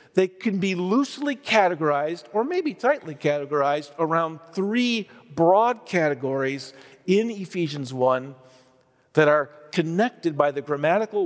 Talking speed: 115 wpm